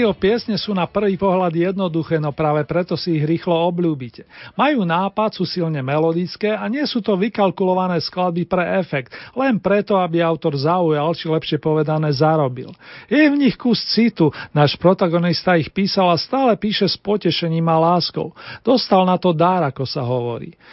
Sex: male